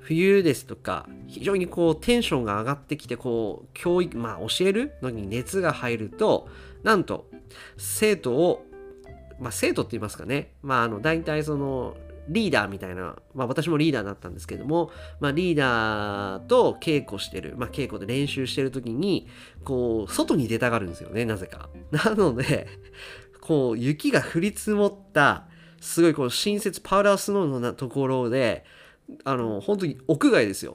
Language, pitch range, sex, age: Japanese, 110-165 Hz, male, 40-59